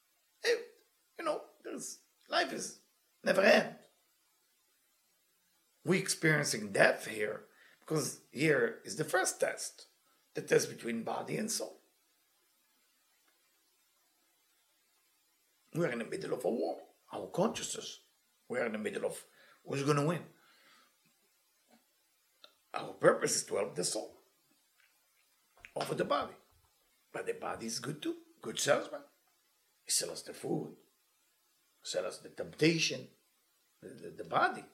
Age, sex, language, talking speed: 60-79, male, English, 125 wpm